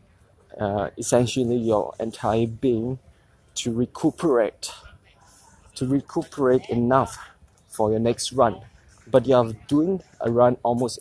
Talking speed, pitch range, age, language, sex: 110 wpm, 110-130 Hz, 20-39, English, male